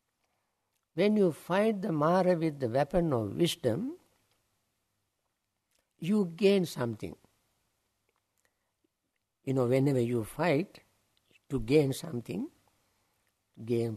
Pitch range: 115-170 Hz